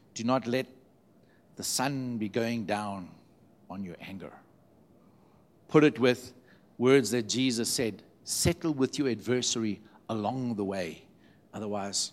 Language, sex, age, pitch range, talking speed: English, male, 60-79, 115-170 Hz, 130 wpm